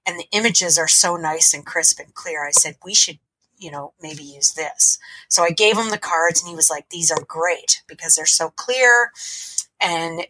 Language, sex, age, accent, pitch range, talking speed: English, female, 30-49, American, 160-195 Hz, 215 wpm